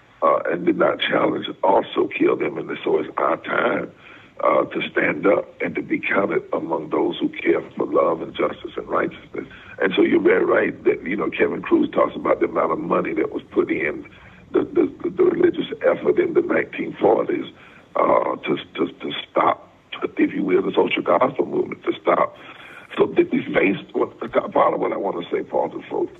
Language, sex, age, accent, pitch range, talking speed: English, male, 60-79, American, 335-405 Hz, 200 wpm